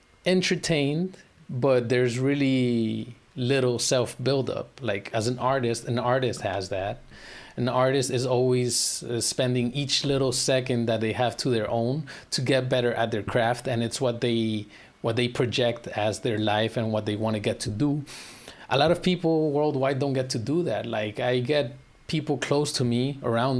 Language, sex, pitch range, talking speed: English, male, 115-135 Hz, 185 wpm